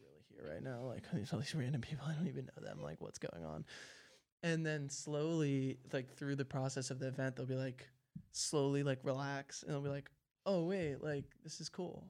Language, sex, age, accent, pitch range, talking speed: English, male, 20-39, American, 140-160 Hz, 215 wpm